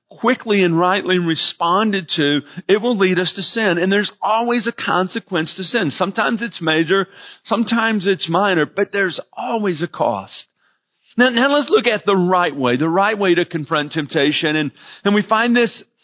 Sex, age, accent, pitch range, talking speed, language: male, 40-59, American, 165-205 Hz, 180 wpm, English